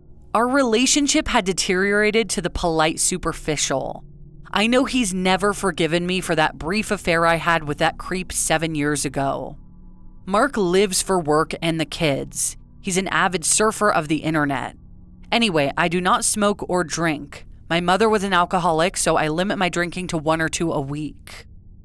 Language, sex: English, female